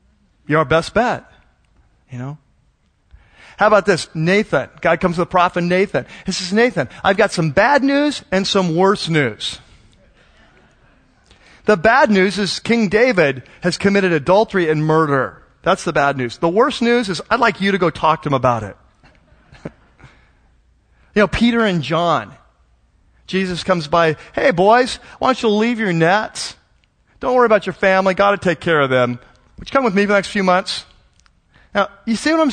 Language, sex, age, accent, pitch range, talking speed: English, male, 40-59, American, 155-225 Hz, 185 wpm